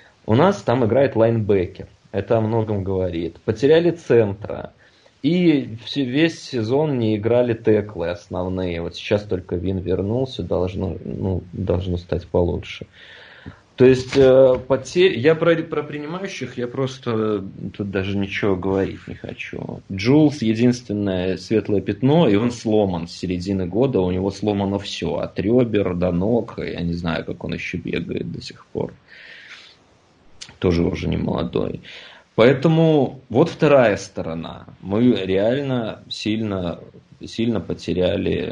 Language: Russian